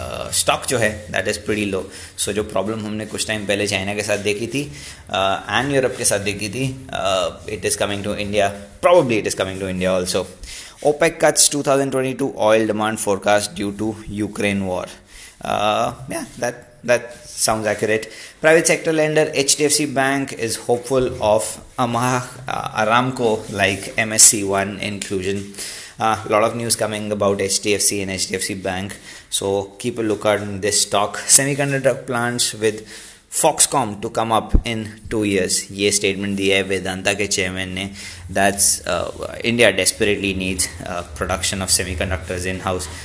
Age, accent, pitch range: 20-39, Indian, 95-115 Hz